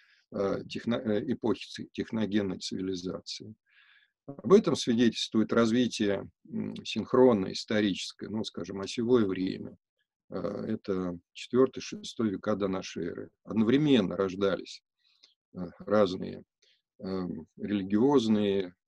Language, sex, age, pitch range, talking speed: Russian, male, 50-69, 100-135 Hz, 70 wpm